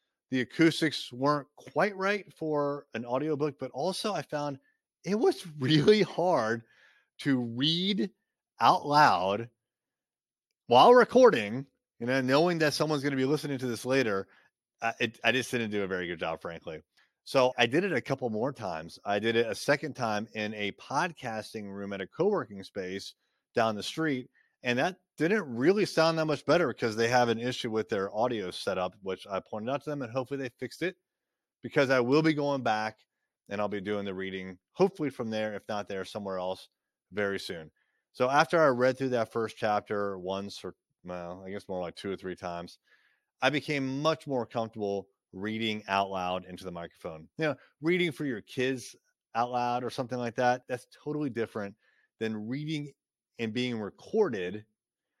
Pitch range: 105-150 Hz